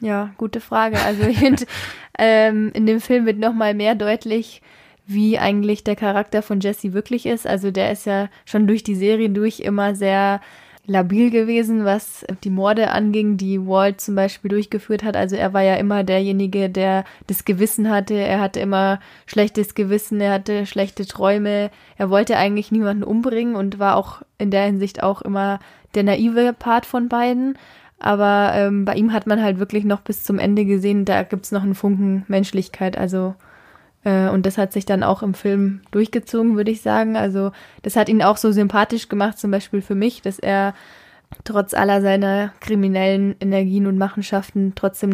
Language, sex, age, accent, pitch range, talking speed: German, female, 20-39, German, 195-210 Hz, 180 wpm